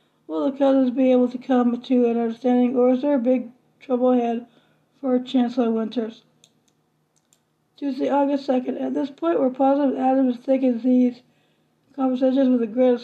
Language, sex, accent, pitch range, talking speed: English, female, American, 250-270 Hz, 165 wpm